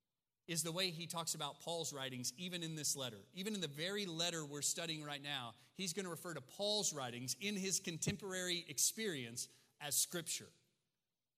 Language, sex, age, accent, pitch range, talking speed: English, male, 30-49, American, 130-175 Hz, 180 wpm